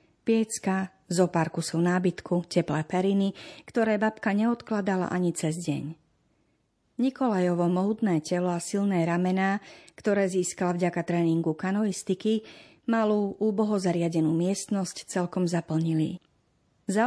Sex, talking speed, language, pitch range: female, 110 wpm, Slovak, 170-215 Hz